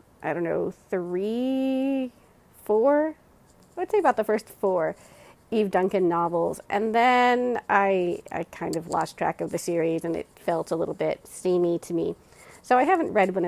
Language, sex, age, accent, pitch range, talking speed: English, female, 30-49, American, 165-220 Hz, 175 wpm